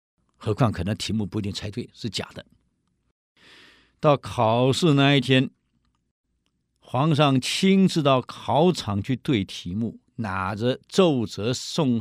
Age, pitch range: 50-69, 95-130 Hz